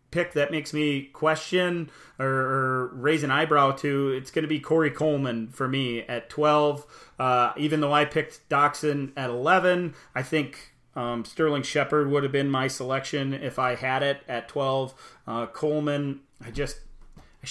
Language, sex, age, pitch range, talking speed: English, male, 30-49, 130-145 Hz, 170 wpm